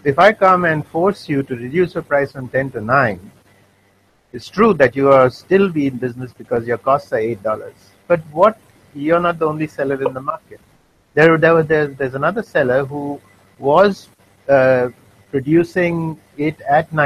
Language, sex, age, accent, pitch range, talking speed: English, male, 50-69, Indian, 115-160 Hz, 170 wpm